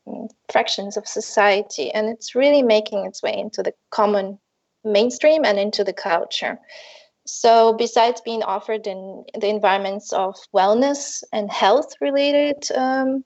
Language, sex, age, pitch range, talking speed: English, female, 20-39, 210-255 Hz, 135 wpm